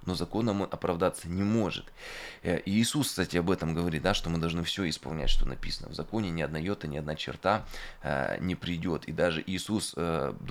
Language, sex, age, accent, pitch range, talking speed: Russian, male, 20-39, native, 85-100 Hz, 200 wpm